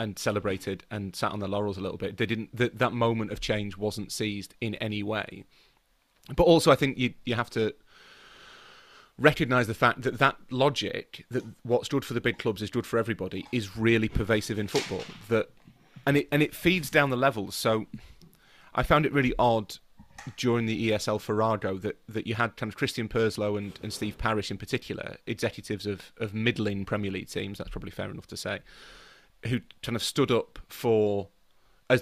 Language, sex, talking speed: English, male, 195 wpm